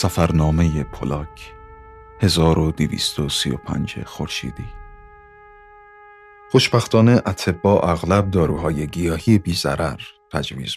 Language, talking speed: Persian, 60 wpm